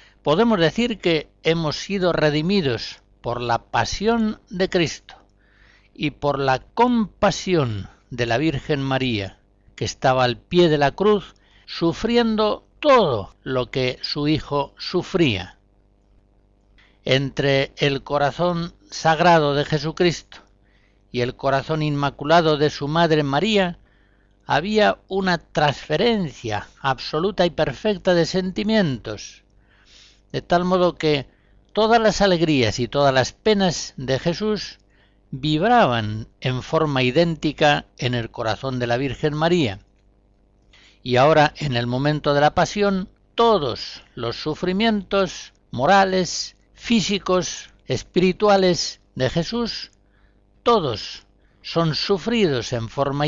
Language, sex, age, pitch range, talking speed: Spanish, male, 60-79, 105-175 Hz, 115 wpm